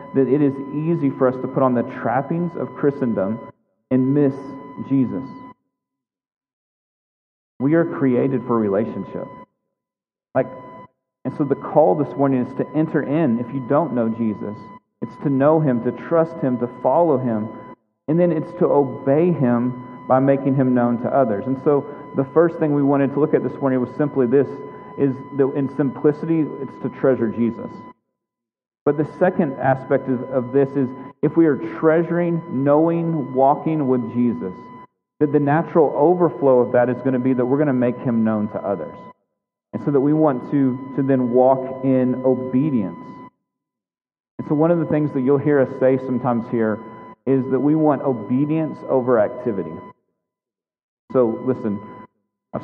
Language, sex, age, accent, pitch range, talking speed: English, male, 40-59, American, 125-150 Hz, 170 wpm